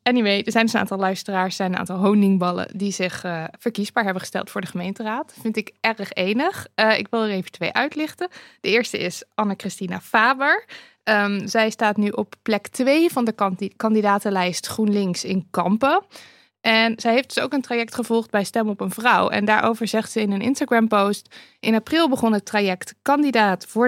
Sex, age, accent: female, 20-39, Dutch